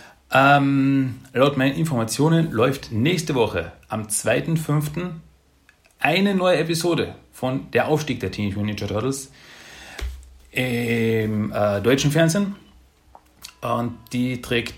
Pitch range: 95-140 Hz